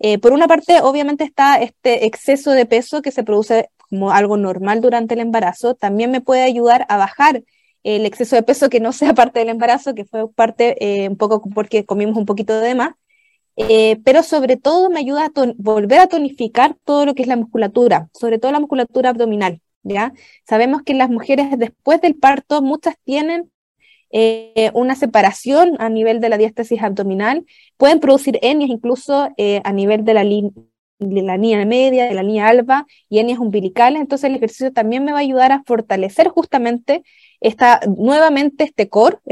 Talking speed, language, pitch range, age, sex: 190 wpm, Romanian, 220-280 Hz, 20-39, female